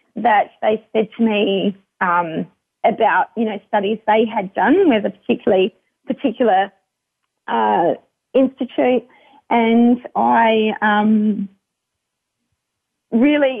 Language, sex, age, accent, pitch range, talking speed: English, female, 30-49, Australian, 210-240 Hz, 100 wpm